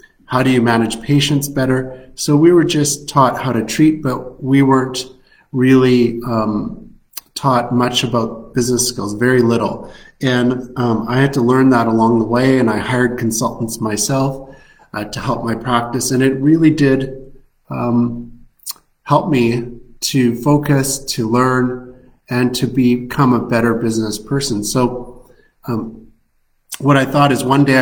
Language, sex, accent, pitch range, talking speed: English, male, American, 120-135 Hz, 155 wpm